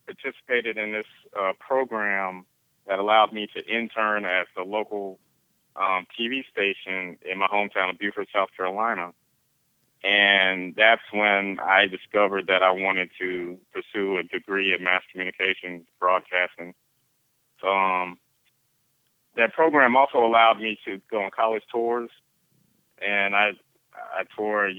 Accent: American